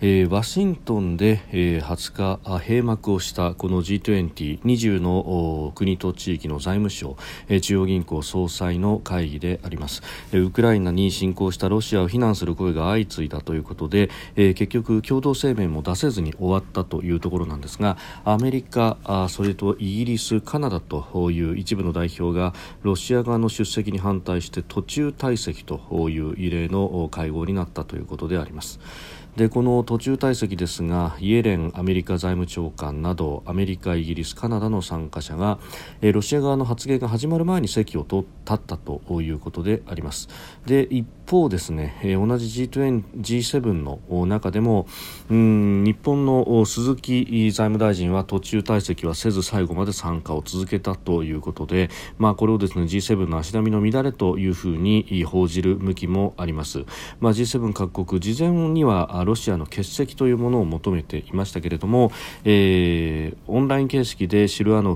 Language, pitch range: Japanese, 85-110 Hz